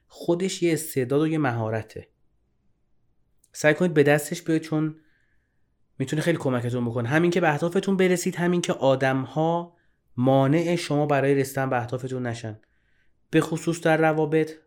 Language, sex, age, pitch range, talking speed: Persian, male, 30-49, 115-155 Hz, 145 wpm